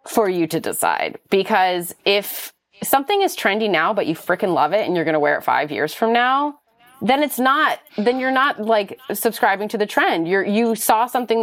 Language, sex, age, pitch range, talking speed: English, female, 30-49, 160-235 Hz, 205 wpm